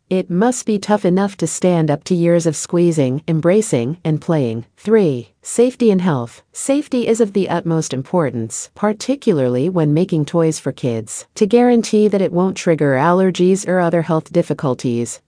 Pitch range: 150-190 Hz